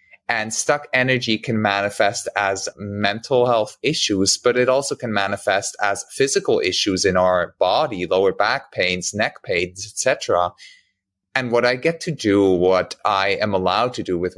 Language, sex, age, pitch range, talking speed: English, male, 30-49, 95-125 Hz, 165 wpm